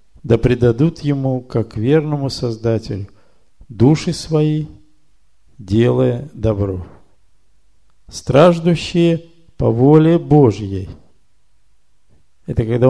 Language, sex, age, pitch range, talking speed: Russian, male, 50-69, 110-140 Hz, 75 wpm